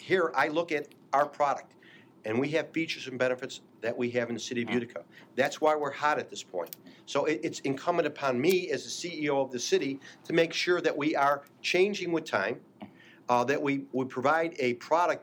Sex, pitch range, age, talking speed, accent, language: male, 125-160 Hz, 50-69, 215 wpm, American, English